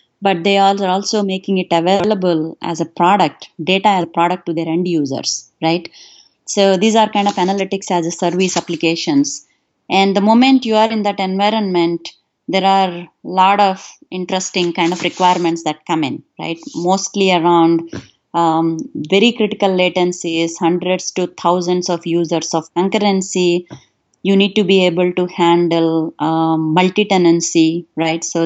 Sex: female